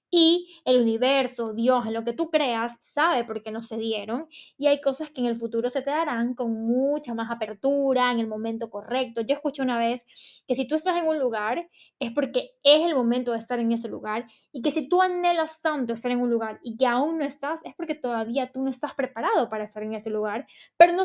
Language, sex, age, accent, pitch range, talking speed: Spanish, female, 10-29, American, 235-280 Hz, 235 wpm